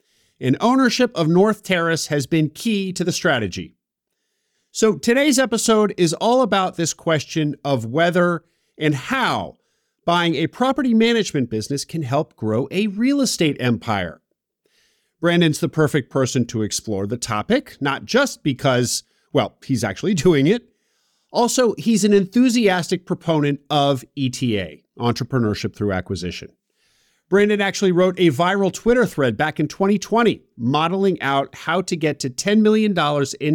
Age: 50-69